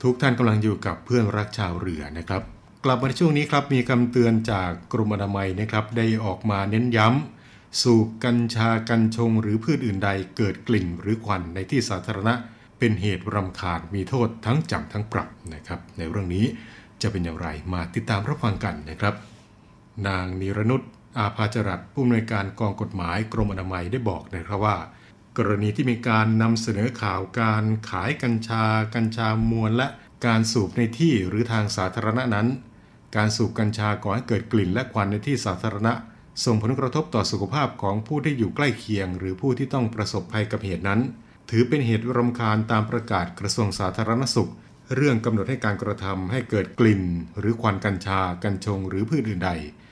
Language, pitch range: Thai, 100-115 Hz